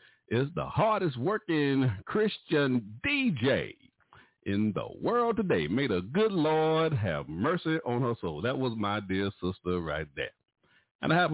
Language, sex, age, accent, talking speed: English, male, 50-69, American, 155 wpm